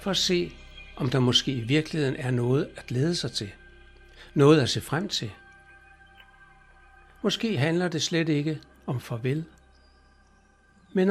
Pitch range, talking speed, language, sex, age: 110-155 Hz, 145 wpm, Danish, male, 60-79